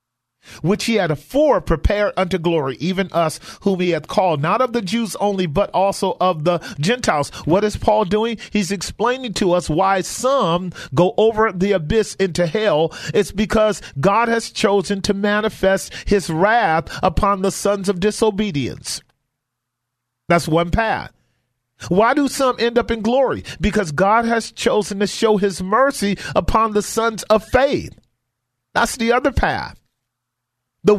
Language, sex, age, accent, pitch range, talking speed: English, male, 40-59, American, 165-215 Hz, 155 wpm